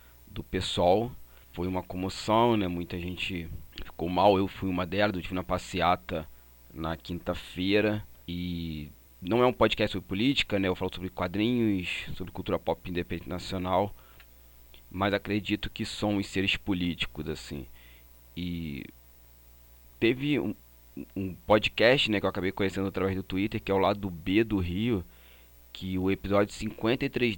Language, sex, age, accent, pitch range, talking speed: Portuguese, male, 30-49, Brazilian, 85-105 Hz, 155 wpm